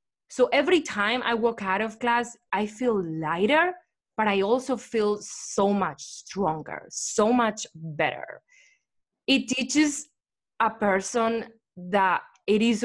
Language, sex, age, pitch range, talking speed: English, female, 20-39, 200-255 Hz, 130 wpm